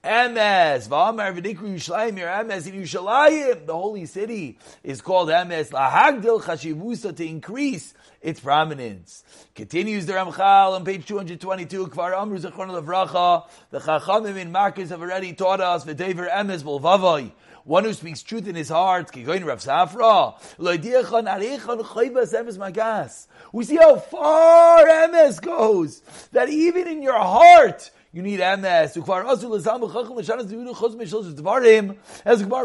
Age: 30-49